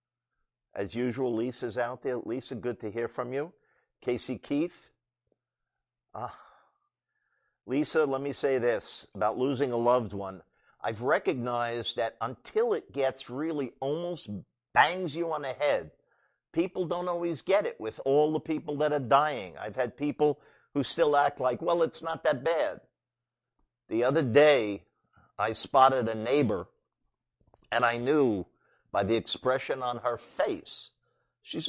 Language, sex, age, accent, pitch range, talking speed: English, male, 50-69, American, 120-155 Hz, 150 wpm